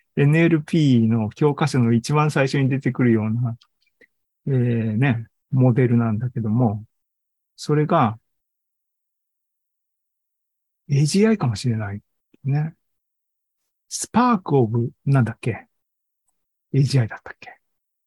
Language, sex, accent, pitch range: Japanese, male, native, 120-165 Hz